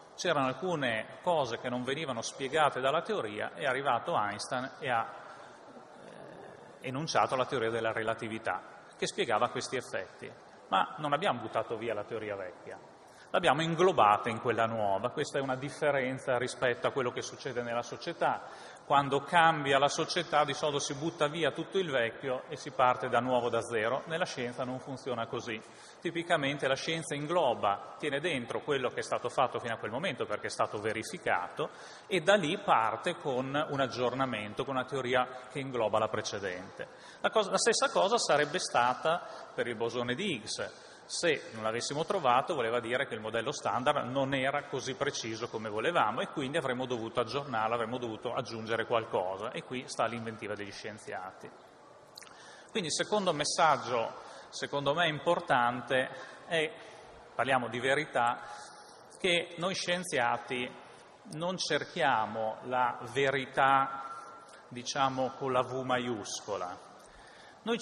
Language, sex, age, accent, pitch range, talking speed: Italian, male, 30-49, native, 120-155 Hz, 150 wpm